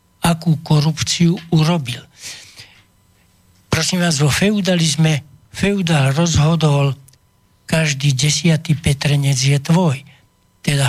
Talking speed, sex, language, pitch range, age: 85 wpm, male, Slovak, 140-170 Hz, 60-79